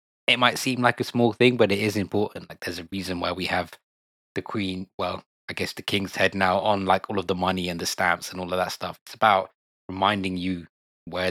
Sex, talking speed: male, 245 wpm